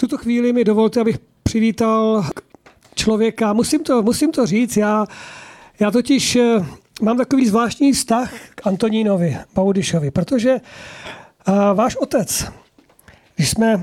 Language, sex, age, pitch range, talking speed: Czech, male, 40-59, 200-225 Hz, 115 wpm